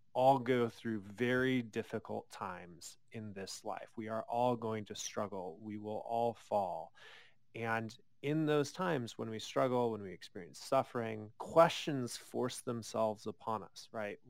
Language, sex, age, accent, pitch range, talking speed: English, male, 30-49, American, 110-135 Hz, 150 wpm